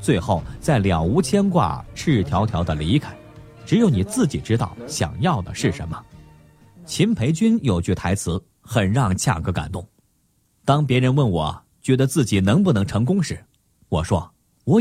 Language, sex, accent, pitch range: Chinese, male, native, 95-155 Hz